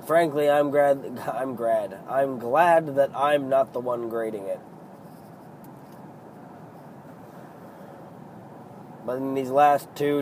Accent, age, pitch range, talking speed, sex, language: American, 20-39, 120-145 Hz, 105 wpm, male, English